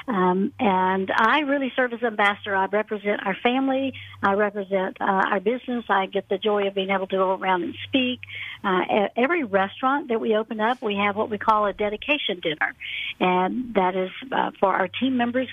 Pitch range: 195-240 Hz